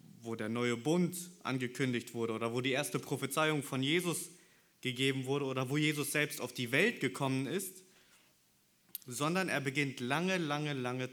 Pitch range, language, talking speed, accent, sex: 125-160 Hz, German, 160 wpm, German, male